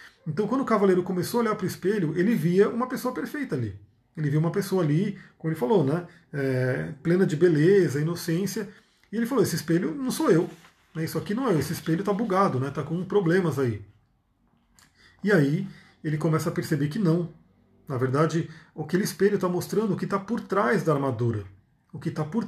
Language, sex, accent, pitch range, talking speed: Portuguese, male, Brazilian, 150-195 Hz, 205 wpm